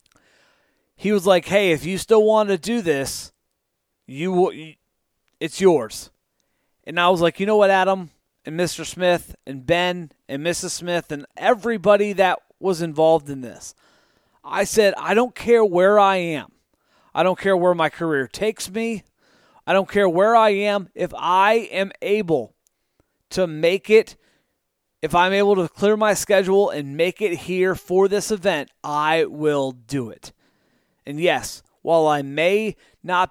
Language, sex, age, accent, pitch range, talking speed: English, male, 30-49, American, 150-190 Hz, 165 wpm